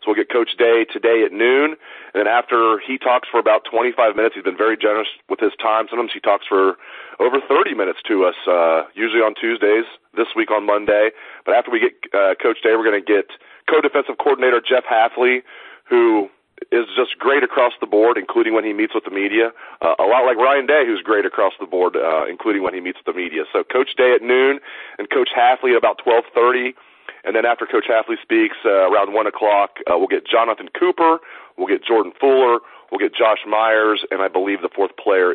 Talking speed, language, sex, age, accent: 215 wpm, English, male, 40-59, American